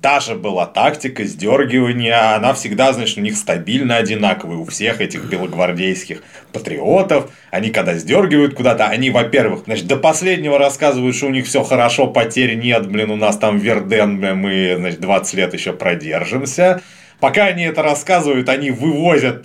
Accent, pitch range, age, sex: native, 115-185 Hz, 30-49, male